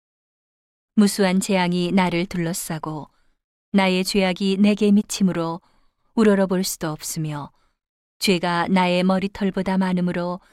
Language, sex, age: Korean, female, 40-59